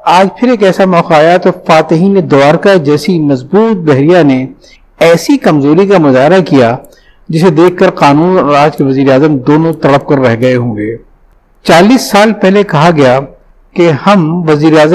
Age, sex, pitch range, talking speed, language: 50-69, male, 140-180 Hz, 165 wpm, Urdu